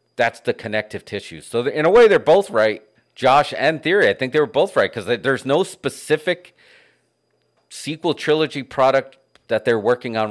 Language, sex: English, male